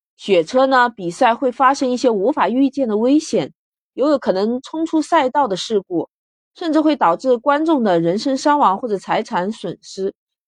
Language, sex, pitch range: Chinese, female, 185-255 Hz